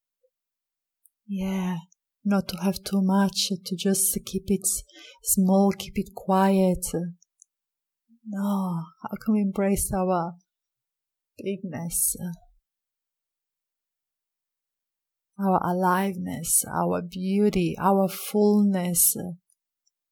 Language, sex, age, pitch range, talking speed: English, female, 30-49, 180-200 Hz, 80 wpm